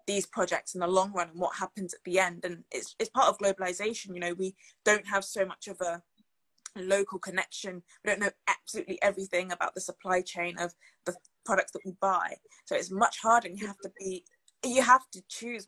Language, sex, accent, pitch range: English, female, British, 180-205 Hz